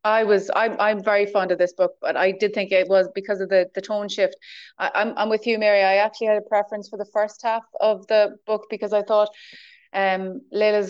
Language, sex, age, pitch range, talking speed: English, female, 30-49, 190-210 Hz, 240 wpm